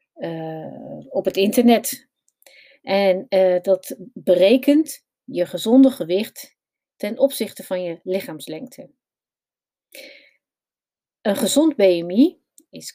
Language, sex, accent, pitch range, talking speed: Dutch, female, Dutch, 190-275 Hz, 95 wpm